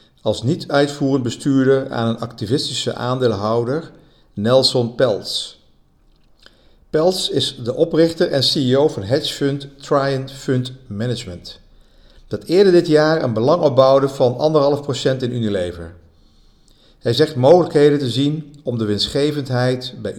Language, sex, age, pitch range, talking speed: Dutch, male, 50-69, 110-140 Hz, 120 wpm